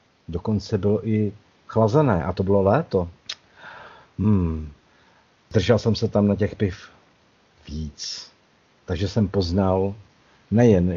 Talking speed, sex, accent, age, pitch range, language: 115 wpm, male, native, 50-69, 85-110 Hz, Czech